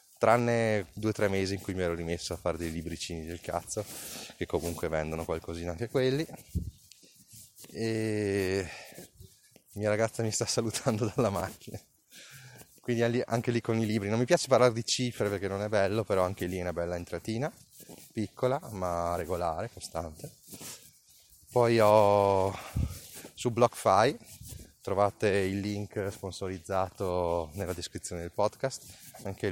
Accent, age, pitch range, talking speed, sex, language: native, 20-39, 90-110 Hz, 140 wpm, male, Italian